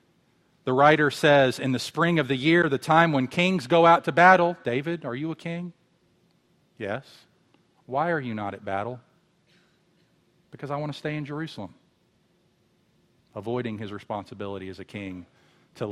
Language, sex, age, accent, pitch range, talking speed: English, male, 40-59, American, 120-170 Hz, 160 wpm